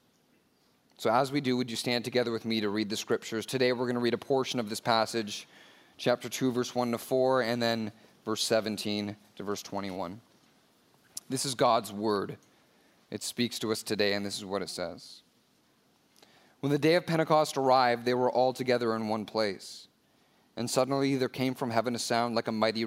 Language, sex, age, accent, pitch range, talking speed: English, male, 30-49, American, 105-120 Hz, 200 wpm